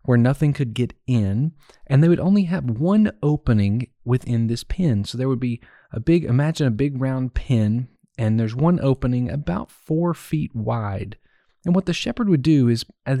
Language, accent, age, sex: English, American, 30-49, male